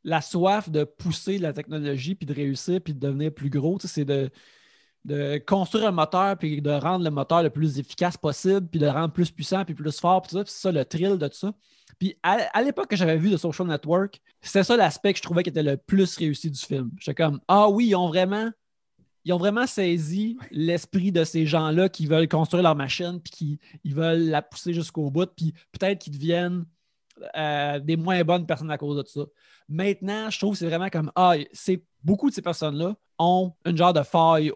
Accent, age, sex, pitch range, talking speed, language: Canadian, 20-39, male, 150-185 Hz, 215 wpm, French